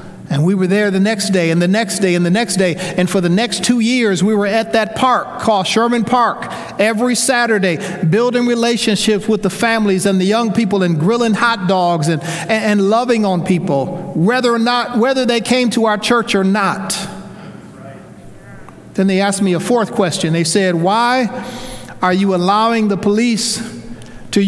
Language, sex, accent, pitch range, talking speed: English, male, American, 175-225 Hz, 185 wpm